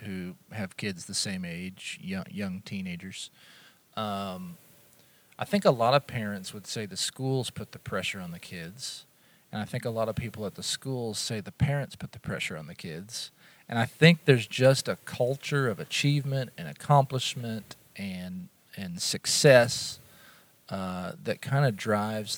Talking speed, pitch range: 170 wpm, 110-145 Hz